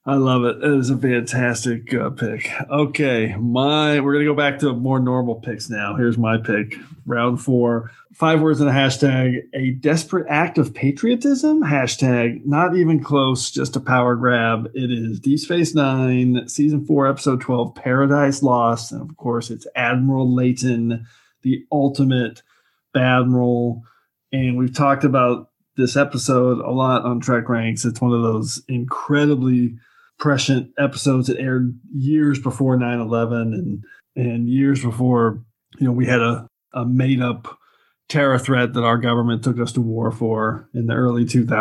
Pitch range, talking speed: 120-140 Hz, 160 wpm